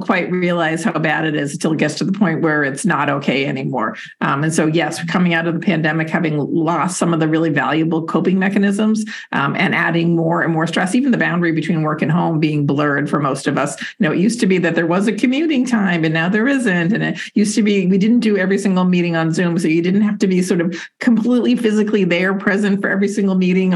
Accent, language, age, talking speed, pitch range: American, English, 50-69, 255 wpm, 165-200 Hz